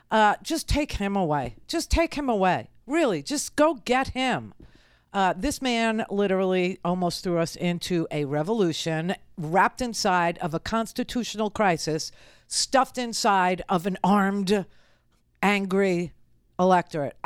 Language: English